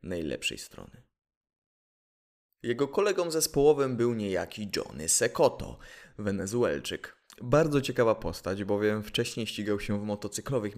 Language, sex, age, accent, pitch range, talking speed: Polish, male, 20-39, native, 95-120 Hz, 105 wpm